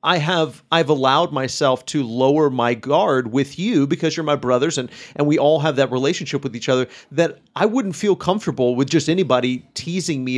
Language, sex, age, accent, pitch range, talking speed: English, male, 30-49, American, 140-180 Hz, 200 wpm